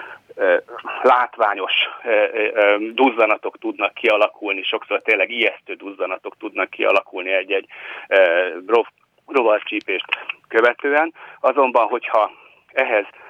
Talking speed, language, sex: 75 wpm, Hungarian, male